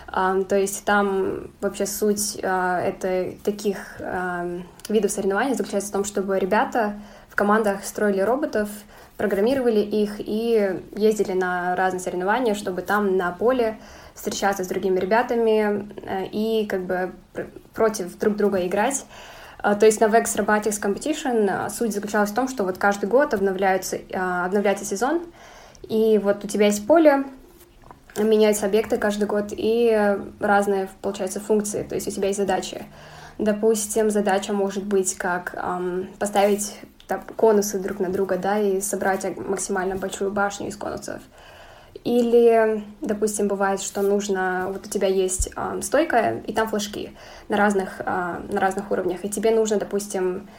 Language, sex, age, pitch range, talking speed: Russian, female, 10-29, 190-215 Hz, 135 wpm